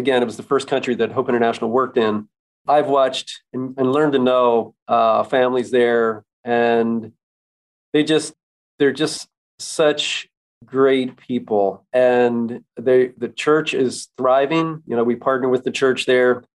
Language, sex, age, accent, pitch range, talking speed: English, male, 40-59, American, 115-135 Hz, 150 wpm